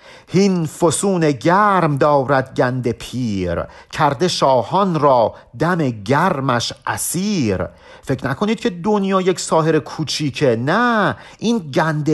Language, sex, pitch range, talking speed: Persian, male, 135-185 Hz, 110 wpm